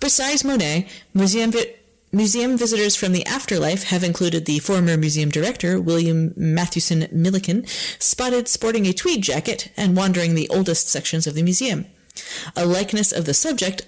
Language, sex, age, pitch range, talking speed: English, female, 30-49, 165-225 Hz, 155 wpm